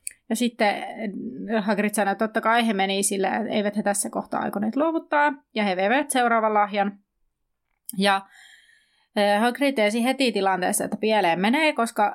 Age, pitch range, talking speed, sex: 30-49, 200-235 Hz, 150 wpm, female